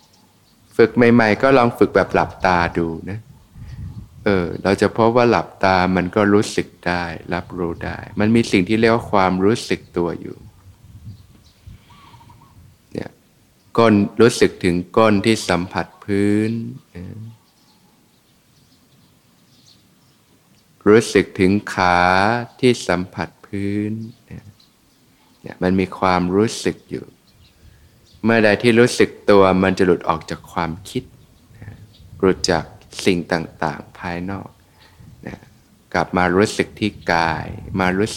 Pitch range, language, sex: 90-110 Hz, Thai, male